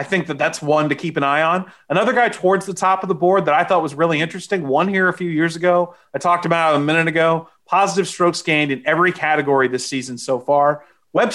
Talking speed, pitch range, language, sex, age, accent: 250 wpm, 135-180 Hz, English, male, 30-49, American